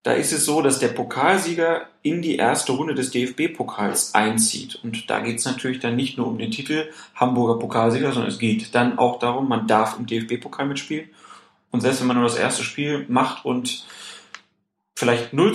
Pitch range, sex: 120-165 Hz, male